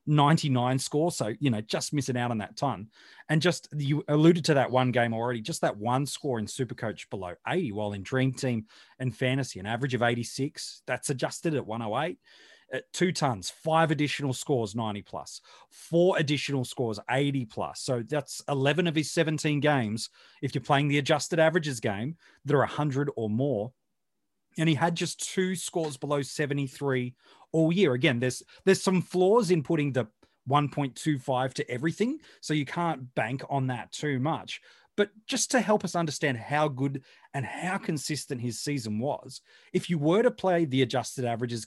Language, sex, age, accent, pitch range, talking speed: English, male, 30-49, Australian, 125-165 Hz, 180 wpm